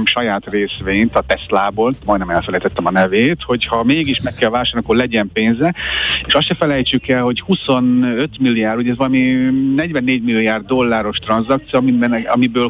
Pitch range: 105-125 Hz